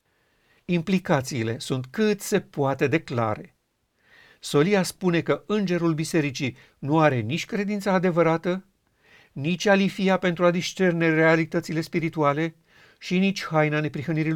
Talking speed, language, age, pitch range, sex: 115 wpm, Romanian, 50-69, 140-170 Hz, male